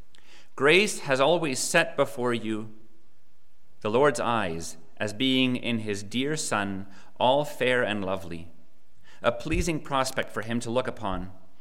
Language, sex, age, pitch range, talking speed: English, male, 30-49, 105-130 Hz, 140 wpm